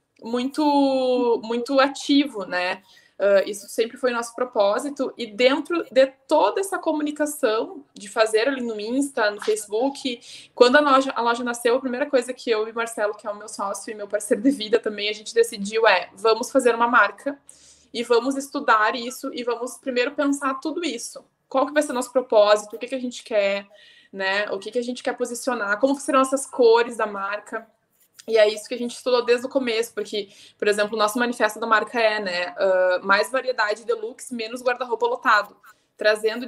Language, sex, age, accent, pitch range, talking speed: Portuguese, female, 20-39, Brazilian, 210-265 Hz, 195 wpm